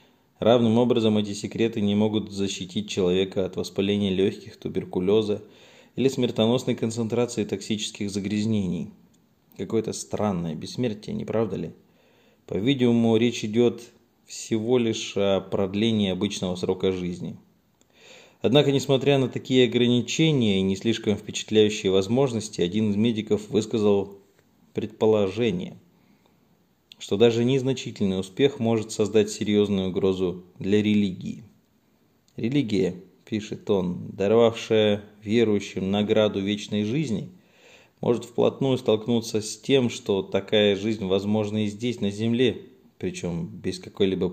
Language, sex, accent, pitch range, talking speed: Russian, male, native, 100-115 Hz, 110 wpm